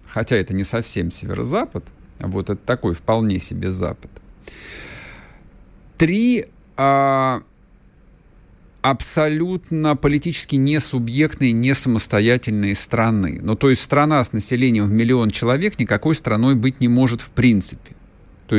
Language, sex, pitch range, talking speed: Russian, male, 105-135 Hz, 120 wpm